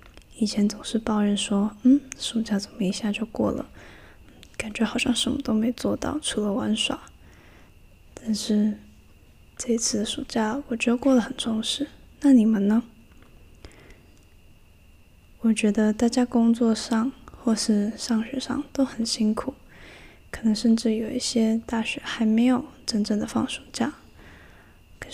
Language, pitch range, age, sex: Chinese, 205-245 Hz, 10-29, female